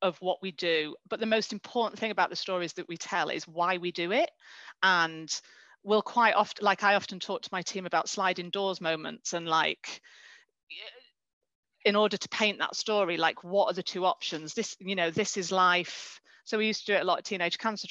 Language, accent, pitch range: English, British, 170-205 Hz